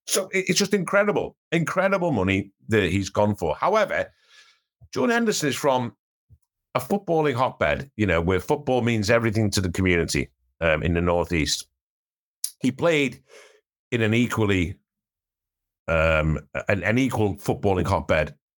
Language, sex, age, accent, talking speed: English, male, 50-69, British, 135 wpm